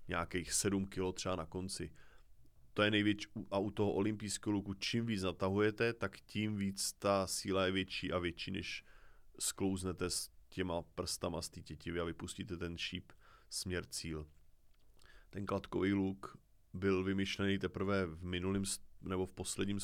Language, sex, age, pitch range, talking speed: Czech, male, 20-39, 90-100 Hz, 140 wpm